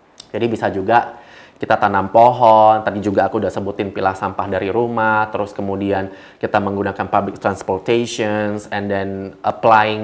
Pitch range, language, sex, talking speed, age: 105-125 Hz, Indonesian, male, 145 wpm, 20-39